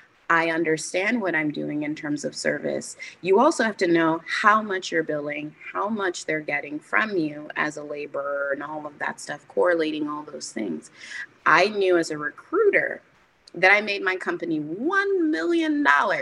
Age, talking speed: 30-49, 180 wpm